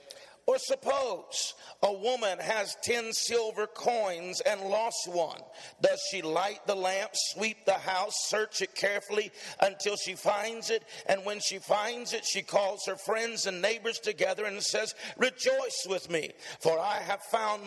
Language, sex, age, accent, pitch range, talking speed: English, male, 50-69, American, 200-240 Hz, 160 wpm